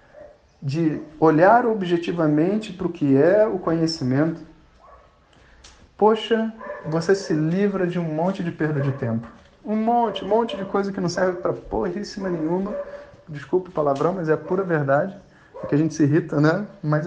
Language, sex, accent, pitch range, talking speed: Portuguese, male, Brazilian, 140-185 Hz, 170 wpm